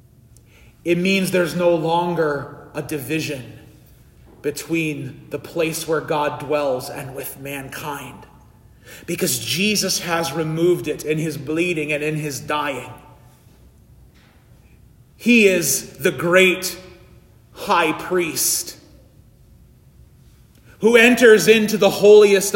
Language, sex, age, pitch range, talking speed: English, male, 30-49, 155-255 Hz, 105 wpm